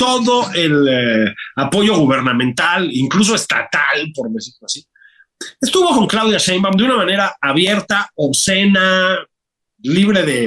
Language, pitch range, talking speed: Spanish, 140-215 Hz, 120 wpm